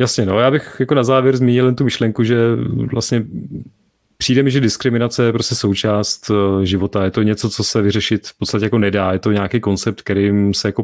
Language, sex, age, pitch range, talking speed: Czech, male, 30-49, 100-115 Hz, 205 wpm